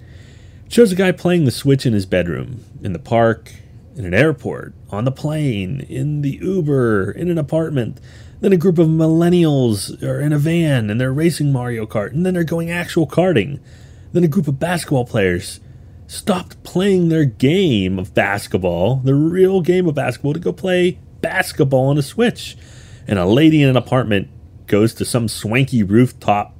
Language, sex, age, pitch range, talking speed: English, male, 30-49, 105-150 Hz, 180 wpm